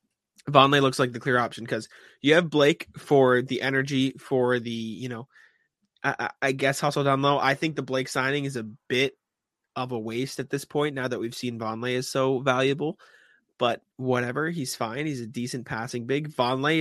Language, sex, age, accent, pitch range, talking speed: English, male, 20-39, American, 120-140 Hz, 195 wpm